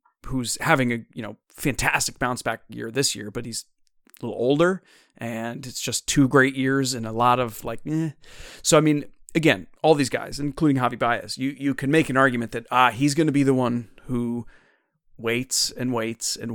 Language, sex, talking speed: English, male, 205 wpm